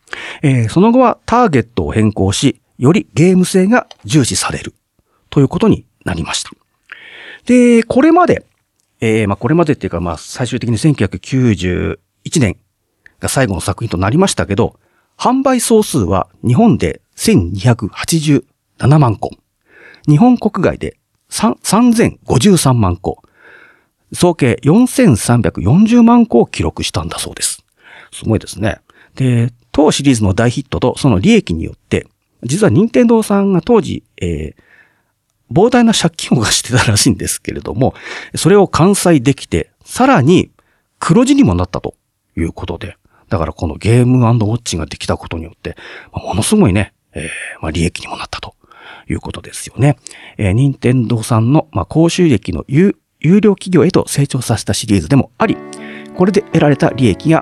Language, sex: Japanese, male